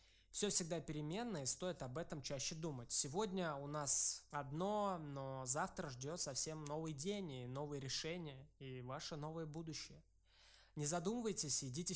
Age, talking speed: 20-39, 145 wpm